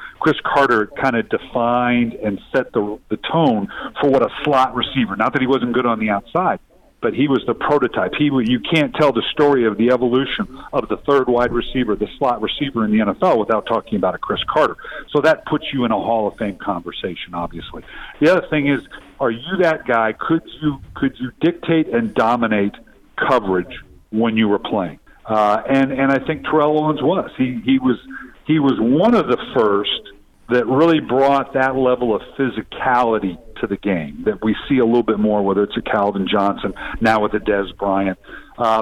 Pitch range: 110-145 Hz